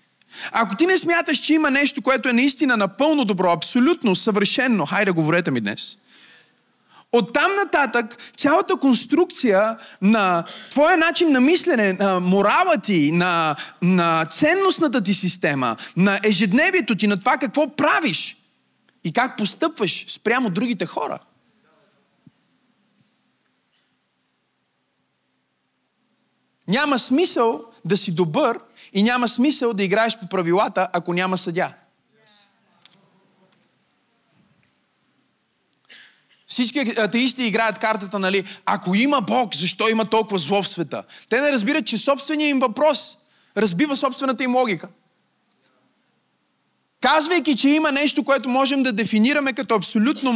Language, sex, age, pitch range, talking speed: Bulgarian, male, 30-49, 195-270 Hz, 120 wpm